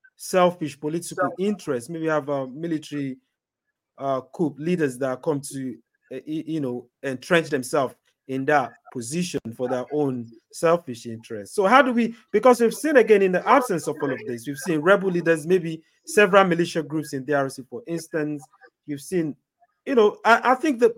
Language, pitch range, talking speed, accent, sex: English, 135-180 Hz, 175 wpm, Nigerian, male